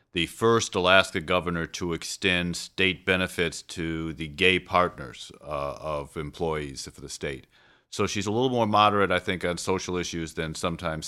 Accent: American